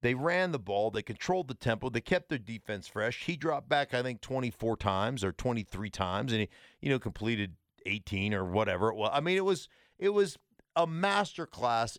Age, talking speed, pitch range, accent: 50-69, 220 wpm, 110-165 Hz, American